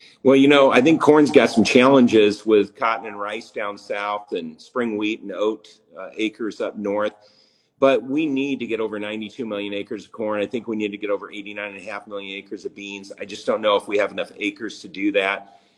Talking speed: 235 wpm